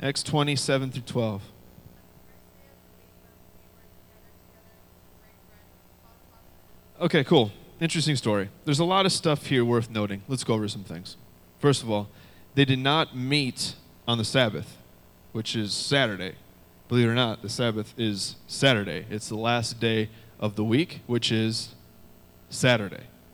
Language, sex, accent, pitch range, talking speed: English, male, American, 95-130 Hz, 135 wpm